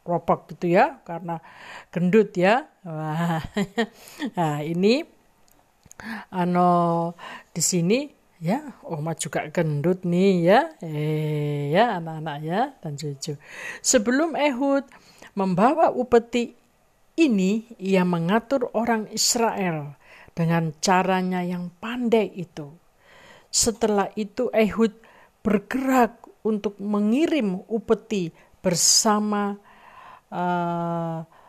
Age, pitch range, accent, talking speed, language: 50-69, 170-230 Hz, native, 90 wpm, Indonesian